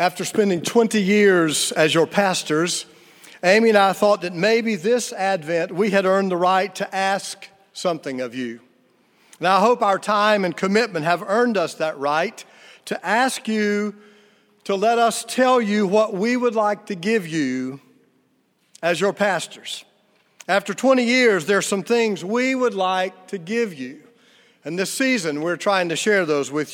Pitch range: 175-225 Hz